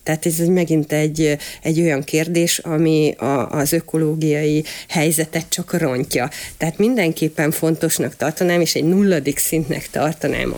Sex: female